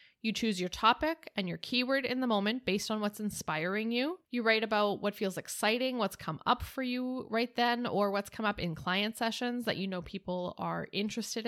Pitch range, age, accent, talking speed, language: 195-255 Hz, 10-29, American, 215 wpm, English